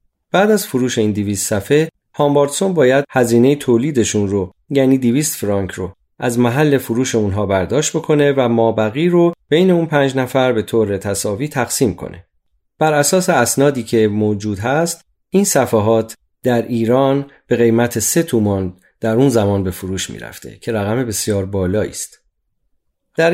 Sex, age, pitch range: male, 30-49, 105-145 Hz